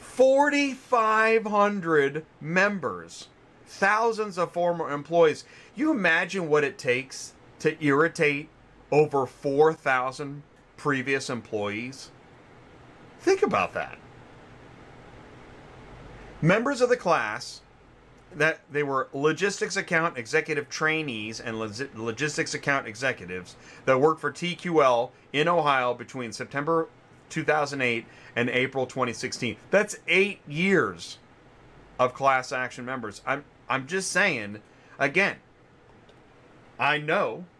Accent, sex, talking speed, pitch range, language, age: American, male, 95 wpm, 130-175 Hz, English, 30-49